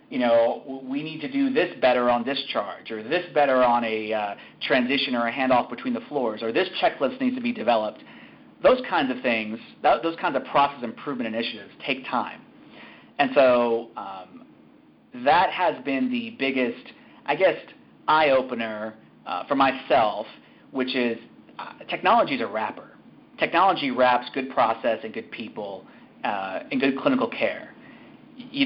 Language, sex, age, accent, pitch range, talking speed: English, male, 30-49, American, 115-160 Hz, 155 wpm